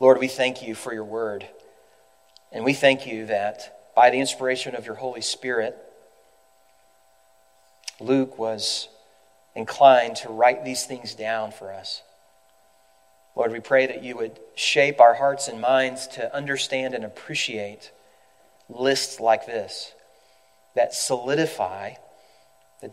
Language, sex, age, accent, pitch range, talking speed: English, male, 40-59, American, 90-130 Hz, 130 wpm